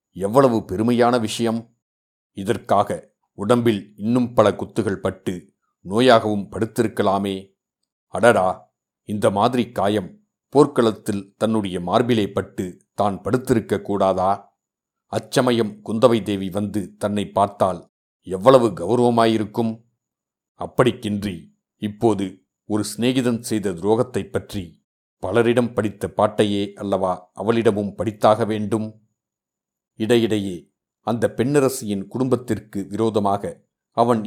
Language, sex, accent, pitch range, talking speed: Tamil, male, native, 100-120 Hz, 90 wpm